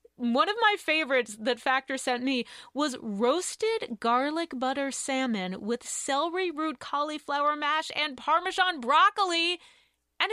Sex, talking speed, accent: female, 130 wpm, American